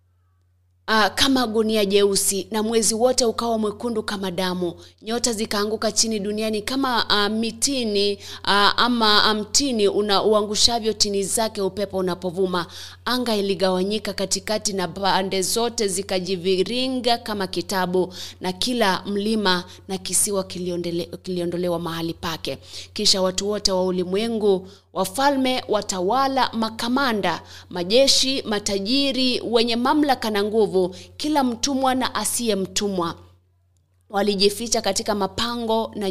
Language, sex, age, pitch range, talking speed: English, female, 30-49, 185-230 Hz, 110 wpm